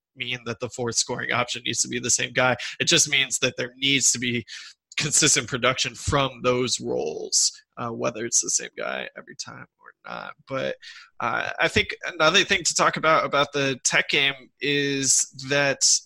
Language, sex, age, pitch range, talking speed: English, male, 20-39, 120-145 Hz, 185 wpm